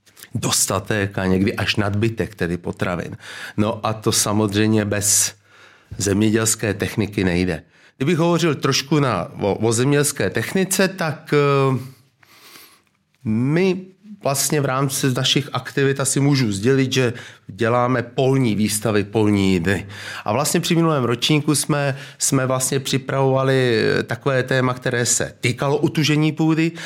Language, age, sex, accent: Czech, 30-49, male, native